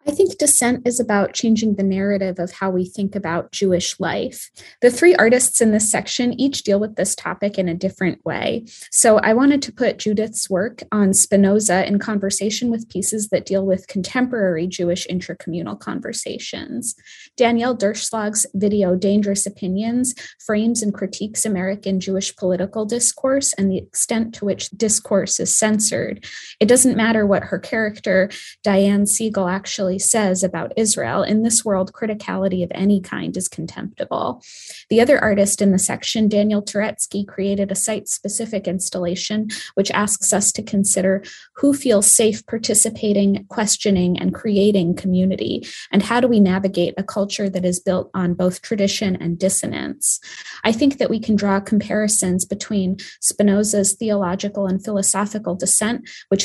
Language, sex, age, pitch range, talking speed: English, female, 20-39, 190-225 Hz, 155 wpm